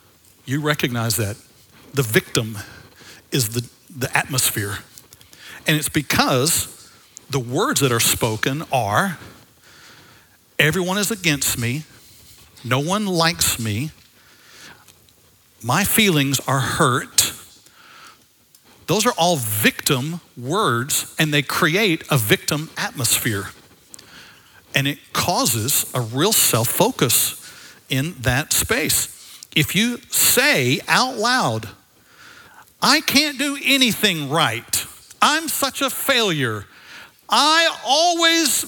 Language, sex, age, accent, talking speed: English, male, 60-79, American, 100 wpm